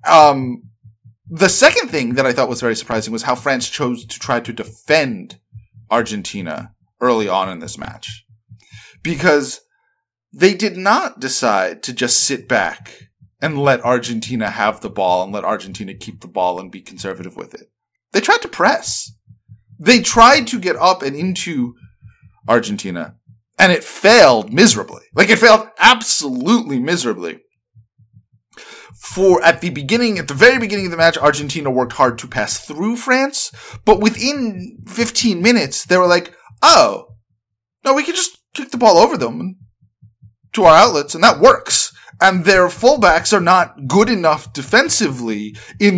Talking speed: 160 wpm